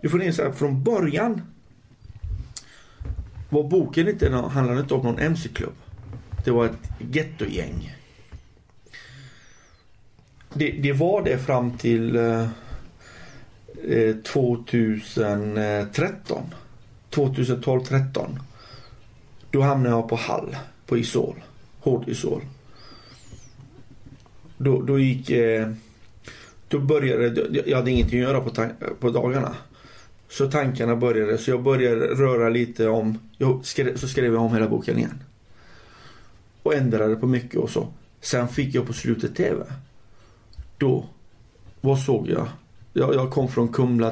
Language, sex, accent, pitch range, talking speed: Swedish, male, native, 110-135 Hz, 120 wpm